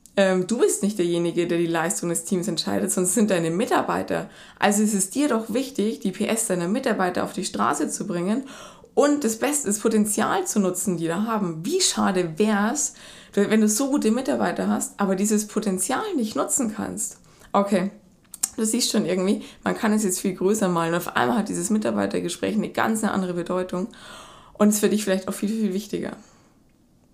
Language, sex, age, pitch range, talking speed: German, female, 20-39, 180-220 Hz, 190 wpm